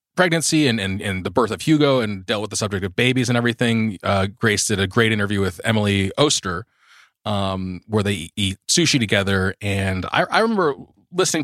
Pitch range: 95-120 Hz